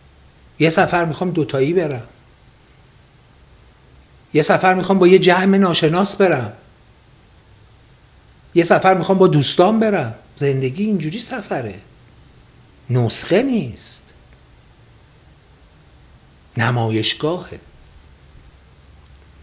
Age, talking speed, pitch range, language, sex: 60-79, 75 wpm, 105-150 Hz, Persian, male